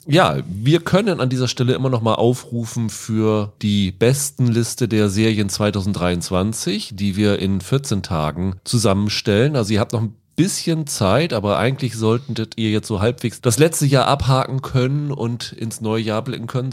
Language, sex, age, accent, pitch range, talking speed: German, male, 30-49, German, 105-135 Hz, 170 wpm